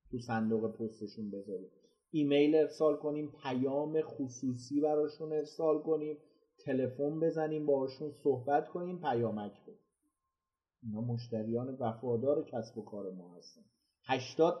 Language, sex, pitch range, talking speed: Persian, male, 130-160 Hz, 115 wpm